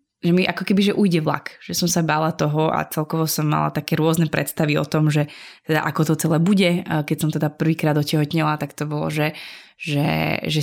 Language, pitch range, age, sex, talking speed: Slovak, 150-165 Hz, 20-39, female, 215 wpm